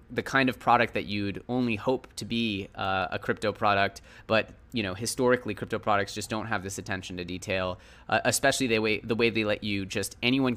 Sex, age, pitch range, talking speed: male, 20-39, 100-120 Hz, 210 wpm